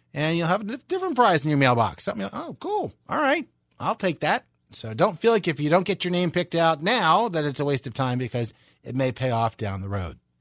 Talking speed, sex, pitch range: 250 wpm, male, 130-210 Hz